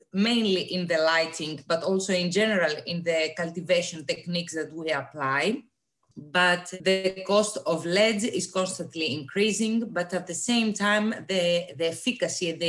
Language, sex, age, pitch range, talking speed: English, female, 30-49, 160-195 Hz, 150 wpm